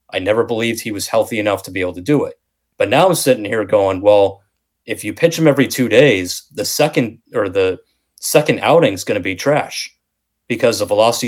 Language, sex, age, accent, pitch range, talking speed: English, male, 30-49, American, 105-135 Hz, 220 wpm